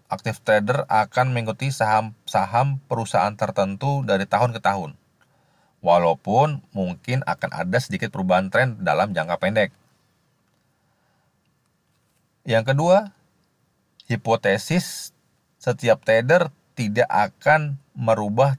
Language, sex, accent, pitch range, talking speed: Indonesian, male, native, 100-130 Hz, 95 wpm